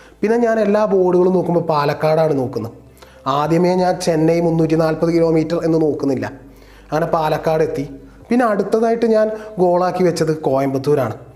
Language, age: Malayalam, 30-49